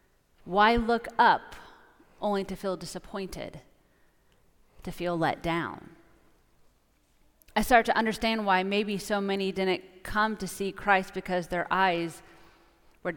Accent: American